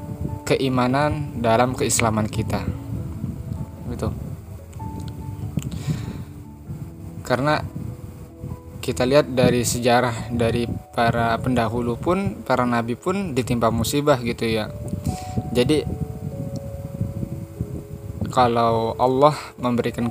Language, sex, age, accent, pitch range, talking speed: Indonesian, male, 20-39, native, 115-125 Hz, 75 wpm